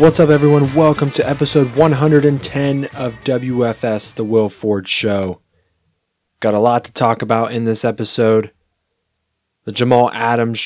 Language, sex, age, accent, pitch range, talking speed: English, male, 20-39, American, 110-130 Hz, 140 wpm